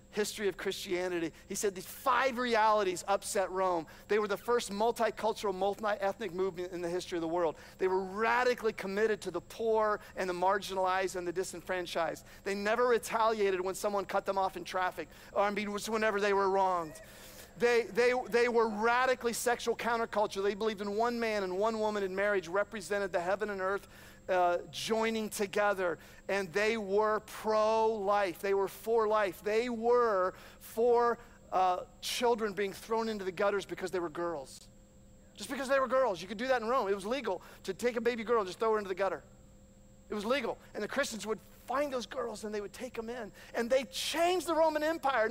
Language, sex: English, male